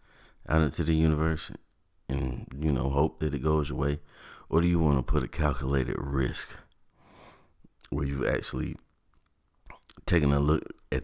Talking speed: 160 wpm